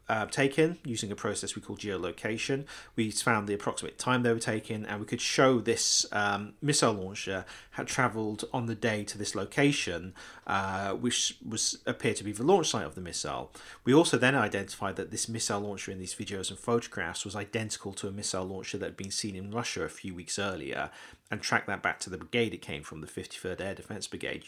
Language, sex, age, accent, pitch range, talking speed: English, male, 40-59, British, 95-115 Hz, 215 wpm